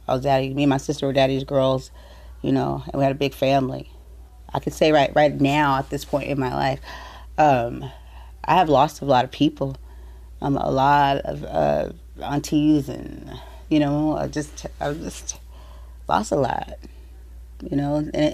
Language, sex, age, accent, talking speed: English, female, 30-49, American, 190 wpm